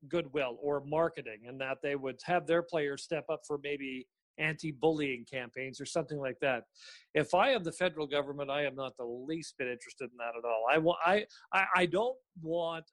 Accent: American